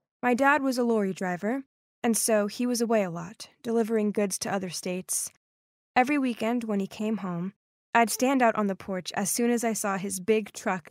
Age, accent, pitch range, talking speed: 10-29, American, 205-255 Hz, 210 wpm